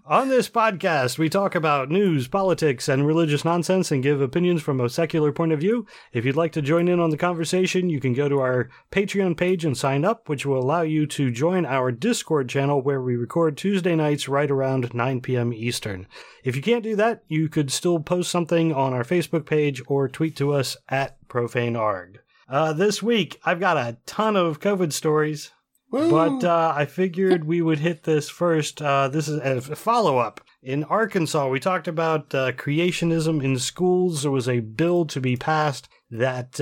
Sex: male